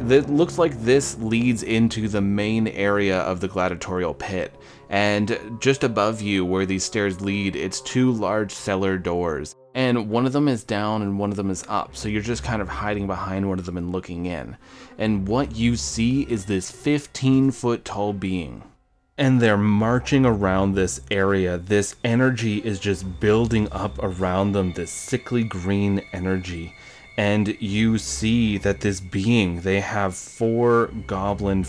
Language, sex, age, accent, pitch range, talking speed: English, male, 20-39, American, 95-110 Hz, 170 wpm